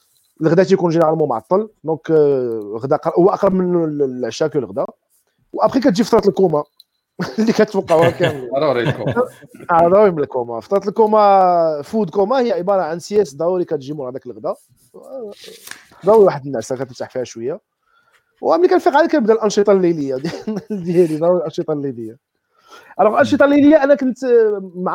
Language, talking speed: Arabic, 140 wpm